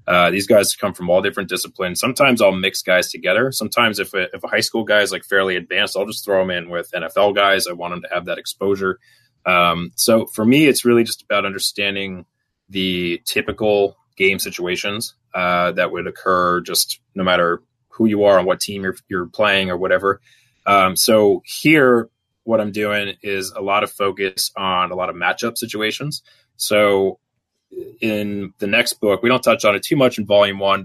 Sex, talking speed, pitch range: male, 200 wpm, 90-110 Hz